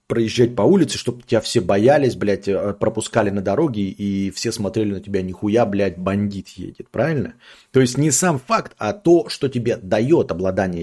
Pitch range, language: 105-140 Hz, Russian